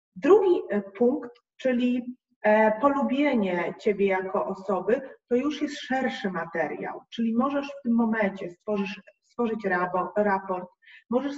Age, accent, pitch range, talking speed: 30-49, native, 215-275 Hz, 110 wpm